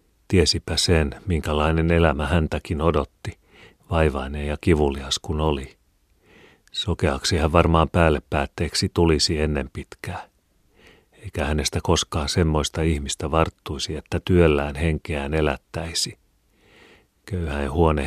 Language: Finnish